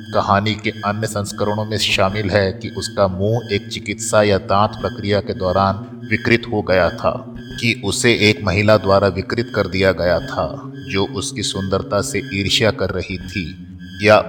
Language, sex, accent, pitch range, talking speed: Hindi, male, native, 95-110 Hz, 170 wpm